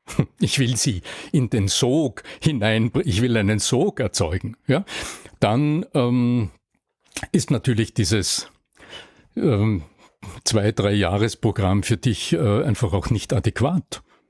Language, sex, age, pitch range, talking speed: German, male, 60-79, 105-130 Hz, 125 wpm